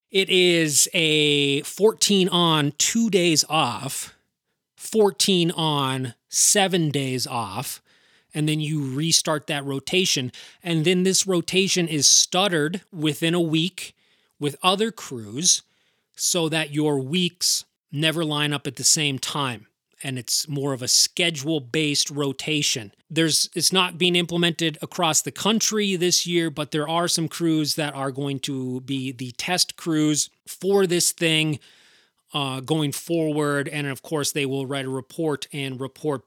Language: English